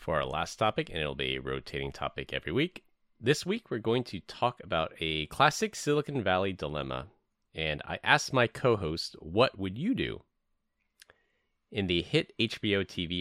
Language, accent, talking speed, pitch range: English, American, 175 wpm, 80-105 Hz